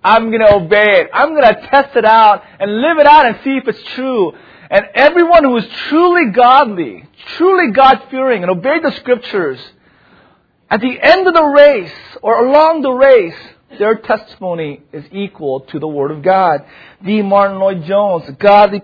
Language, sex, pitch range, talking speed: English, male, 200-290 Hz, 175 wpm